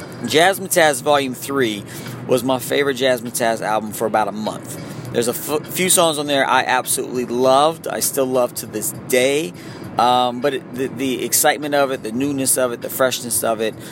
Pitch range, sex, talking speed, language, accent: 120-155 Hz, male, 190 wpm, English, American